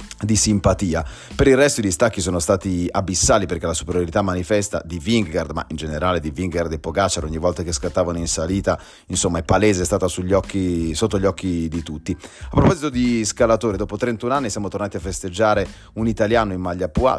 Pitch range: 90-110 Hz